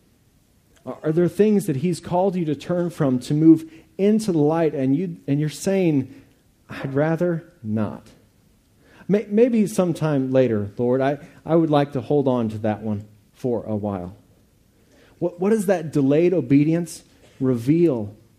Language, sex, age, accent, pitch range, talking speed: English, male, 40-59, American, 115-150 Hz, 150 wpm